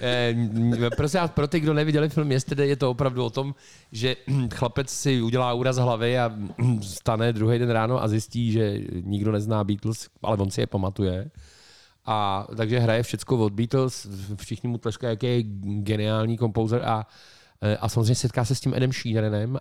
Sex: male